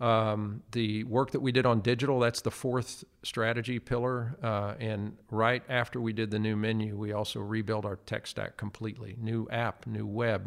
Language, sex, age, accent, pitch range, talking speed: English, male, 50-69, American, 105-120 Hz, 190 wpm